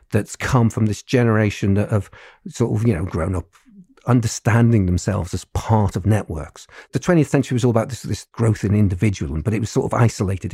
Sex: male